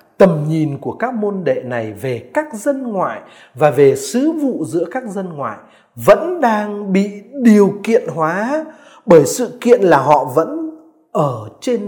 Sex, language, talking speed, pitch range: male, Vietnamese, 165 wpm, 155-245 Hz